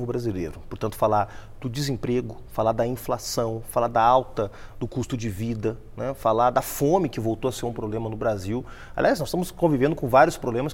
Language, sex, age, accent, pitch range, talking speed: English, male, 30-49, Brazilian, 115-165 Hz, 190 wpm